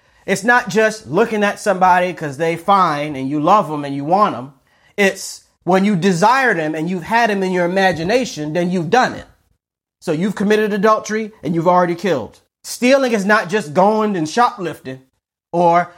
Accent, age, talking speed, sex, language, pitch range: American, 30-49, 185 wpm, male, English, 155-210 Hz